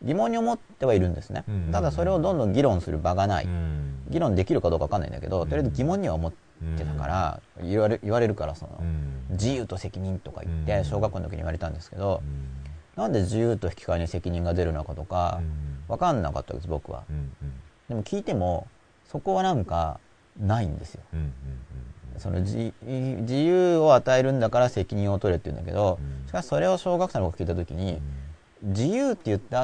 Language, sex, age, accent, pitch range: Japanese, male, 40-59, native, 80-125 Hz